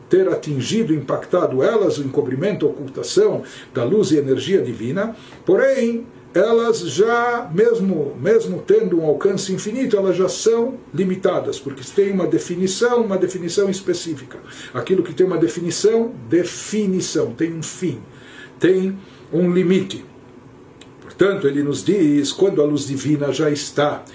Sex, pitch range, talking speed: male, 155-215 Hz, 135 wpm